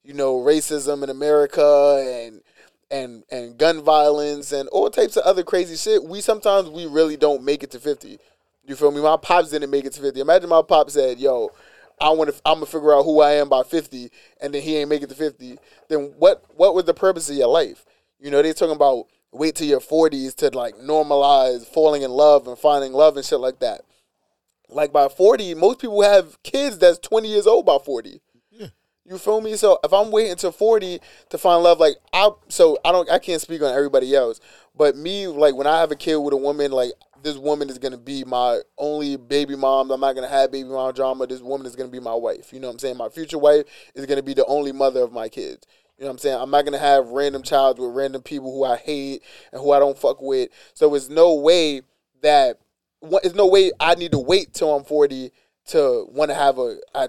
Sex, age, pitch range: male, 20-39, 140-175 Hz